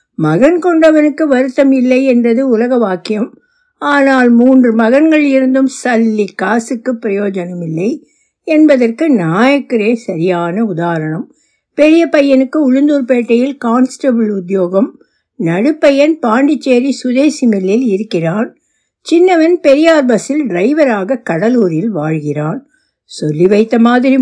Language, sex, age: Tamil, female, 60-79